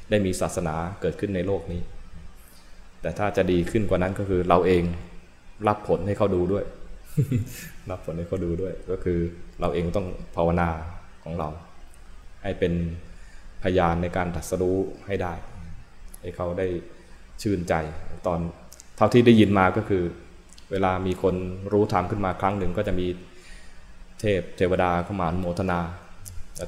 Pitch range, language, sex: 85-95 Hz, Thai, male